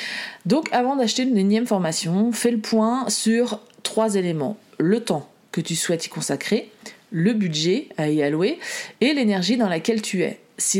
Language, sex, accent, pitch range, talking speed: French, female, French, 175-215 Hz, 170 wpm